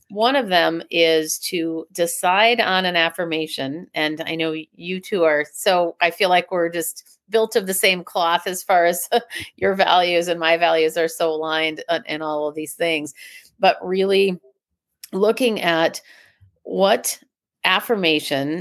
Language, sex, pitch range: English, female, 165-195 Hz